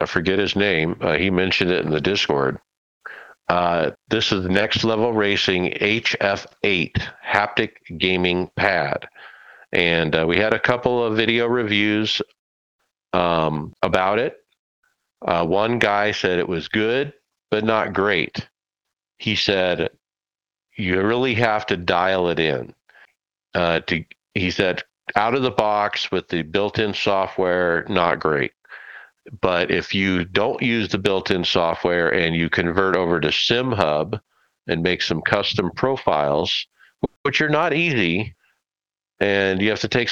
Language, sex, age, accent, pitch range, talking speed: English, male, 50-69, American, 90-115 Hz, 140 wpm